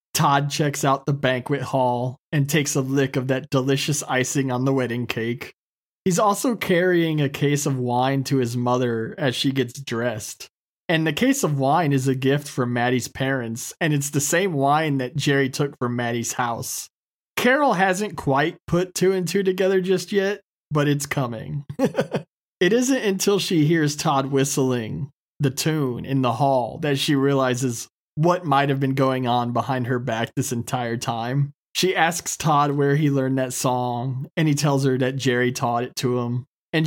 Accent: American